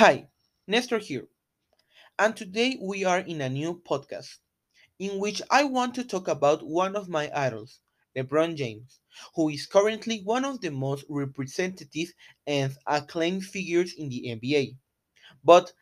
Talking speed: 150 wpm